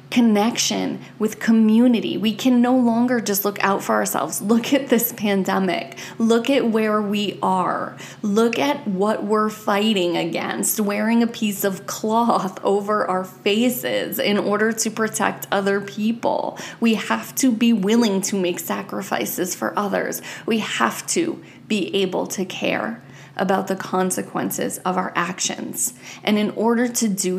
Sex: female